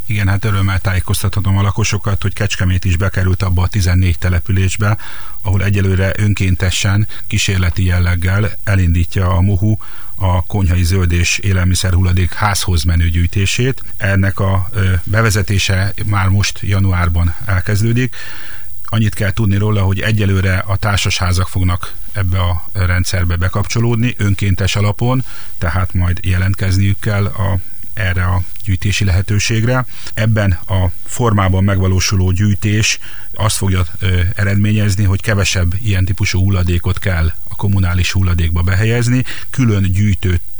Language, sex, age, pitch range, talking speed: Hungarian, male, 40-59, 90-105 Hz, 125 wpm